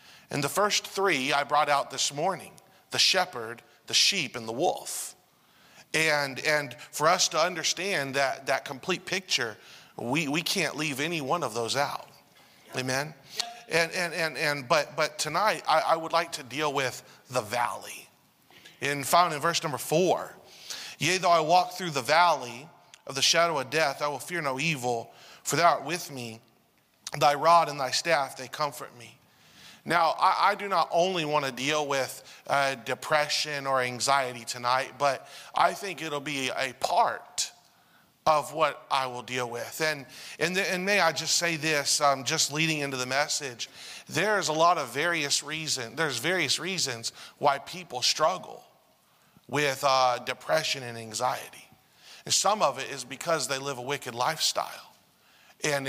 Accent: American